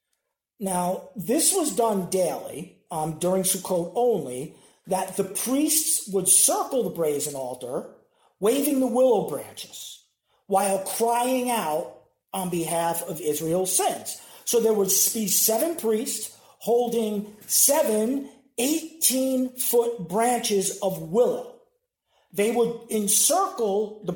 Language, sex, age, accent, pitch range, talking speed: English, male, 40-59, American, 180-240 Hz, 110 wpm